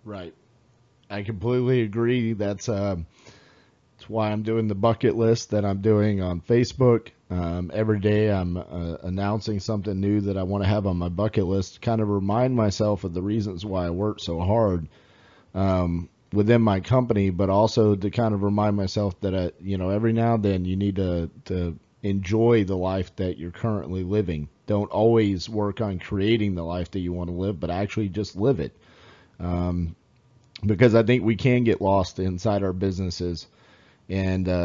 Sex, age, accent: male, 40-59, American